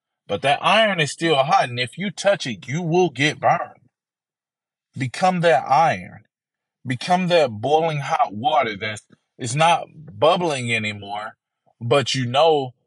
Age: 20-39